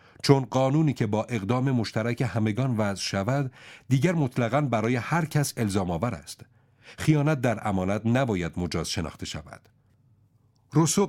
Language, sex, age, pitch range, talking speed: Persian, male, 50-69, 100-140 Hz, 135 wpm